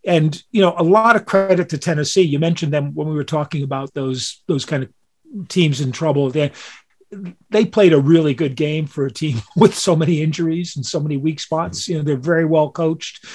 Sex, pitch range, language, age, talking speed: male, 140-165 Hz, English, 40-59, 220 wpm